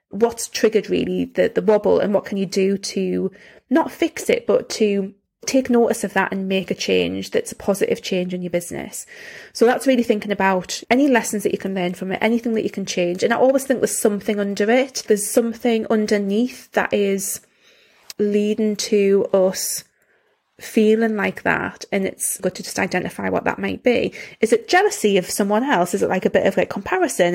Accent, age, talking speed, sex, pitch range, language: British, 20-39, 205 wpm, female, 200-245 Hz, English